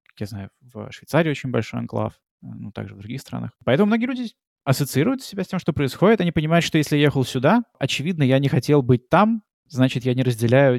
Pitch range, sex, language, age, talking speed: 110-140 Hz, male, Russian, 20-39, 210 wpm